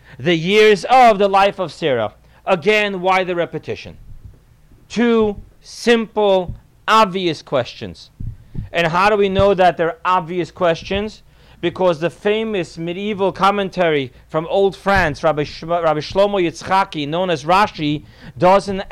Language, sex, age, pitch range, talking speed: English, male, 40-59, 165-205 Hz, 130 wpm